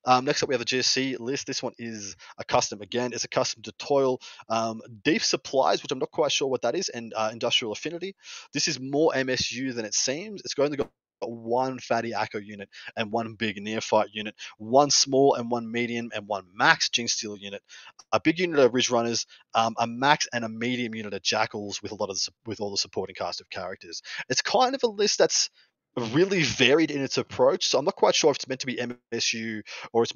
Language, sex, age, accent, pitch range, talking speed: English, male, 20-39, Australian, 110-135 Hz, 235 wpm